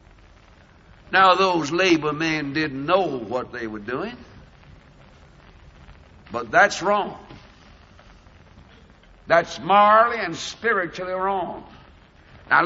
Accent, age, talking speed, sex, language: American, 60-79, 90 wpm, male, English